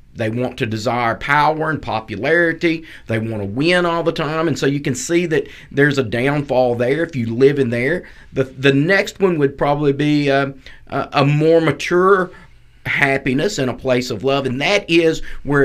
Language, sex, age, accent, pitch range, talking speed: English, male, 40-59, American, 120-155 Hz, 190 wpm